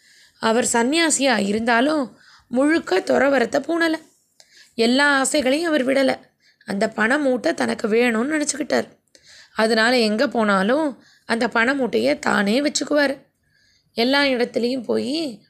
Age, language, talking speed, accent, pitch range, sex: 20-39, Tamil, 95 wpm, native, 225-290 Hz, female